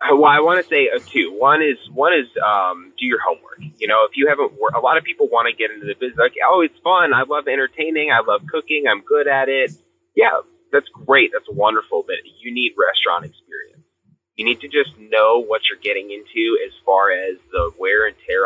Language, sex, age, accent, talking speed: English, male, 20-39, American, 235 wpm